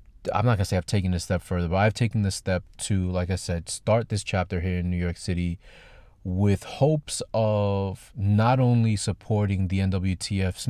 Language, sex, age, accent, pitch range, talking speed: English, male, 30-49, American, 95-110 Hz, 195 wpm